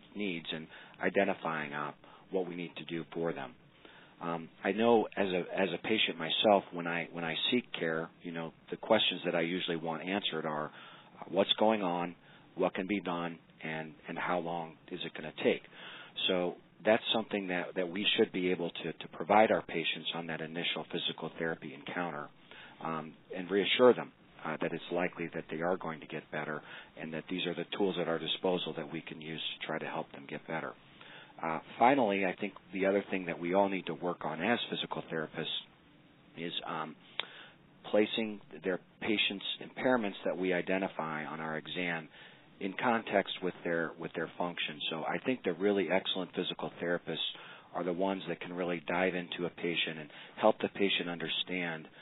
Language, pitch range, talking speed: English, 80-95 Hz, 195 wpm